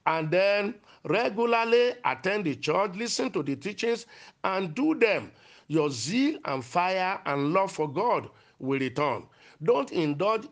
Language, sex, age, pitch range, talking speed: English, male, 50-69, 155-215 Hz, 145 wpm